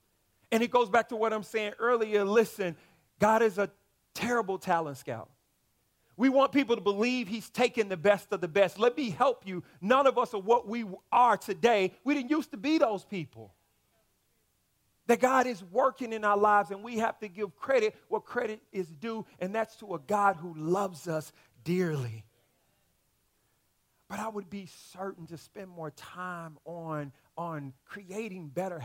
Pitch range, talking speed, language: 150-220 Hz, 180 wpm, English